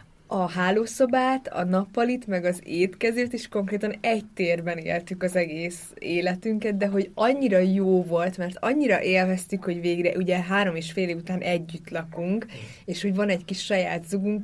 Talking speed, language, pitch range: 165 wpm, Hungarian, 175-210 Hz